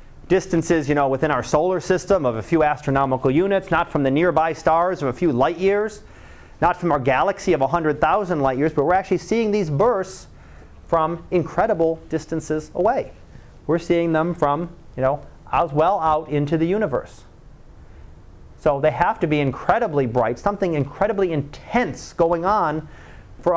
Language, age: English, 30-49